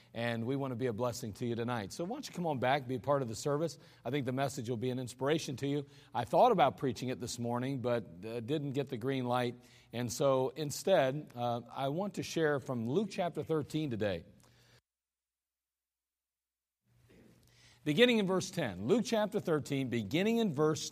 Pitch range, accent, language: 120-155 Hz, American, English